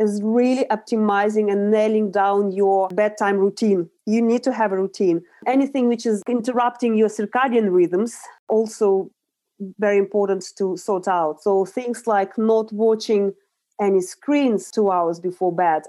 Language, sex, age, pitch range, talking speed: English, female, 30-49, 185-225 Hz, 145 wpm